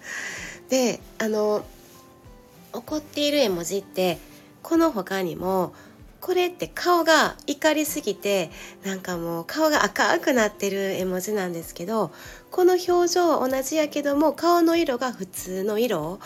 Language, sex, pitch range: Japanese, female, 180-275 Hz